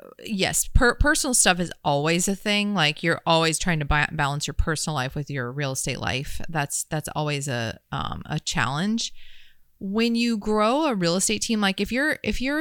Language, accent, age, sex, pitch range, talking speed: English, American, 30-49, female, 155-195 Hz, 200 wpm